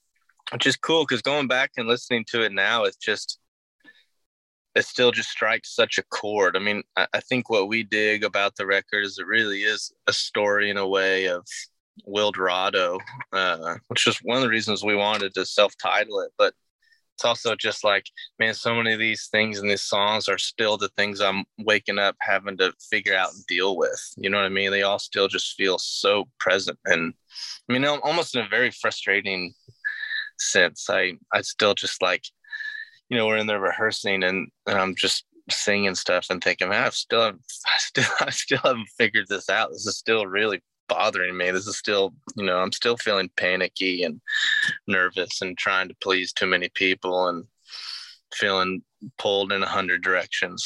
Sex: male